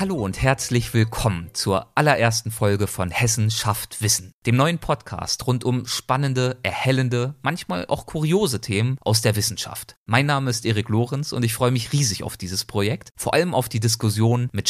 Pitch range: 105-130 Hz